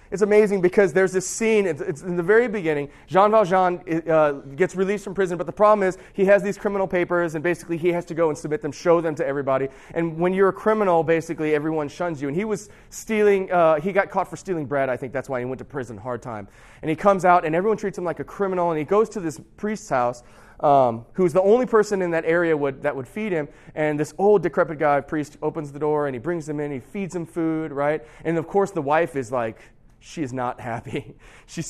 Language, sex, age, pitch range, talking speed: English, male, 30-49, 125-175 Hz, 250 wpm